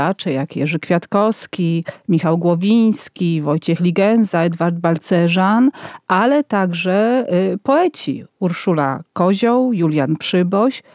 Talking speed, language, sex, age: 90 wpm, Polish, female, 40-59